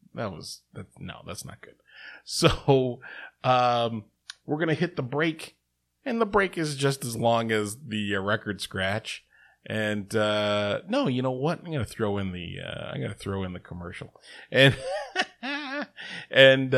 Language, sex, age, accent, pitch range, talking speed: English, male, 30-49, American, 105-160 Hz, 175 wpm